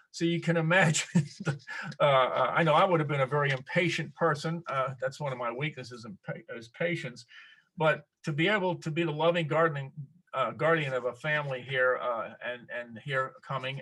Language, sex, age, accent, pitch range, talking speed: English, male, 50-69, American, 130-160 Hz, 185 wpm